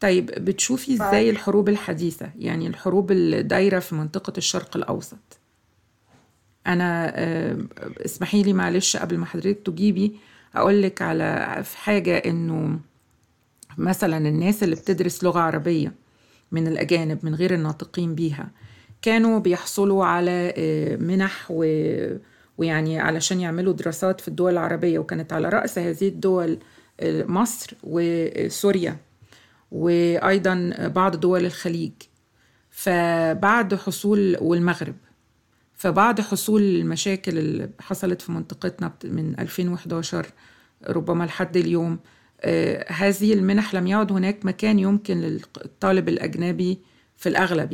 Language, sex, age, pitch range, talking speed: Arabic, female, 40-59, 160-195 Hz, 110 wpm